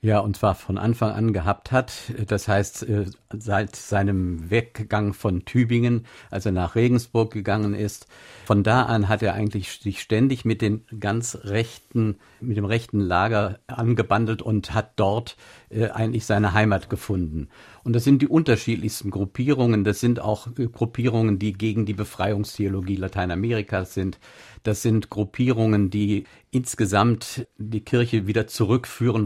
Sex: male